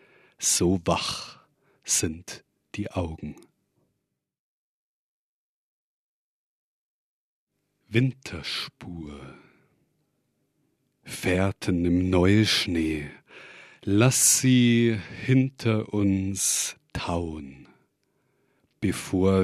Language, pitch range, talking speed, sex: German, 85-115 Hz, 45 wpm, male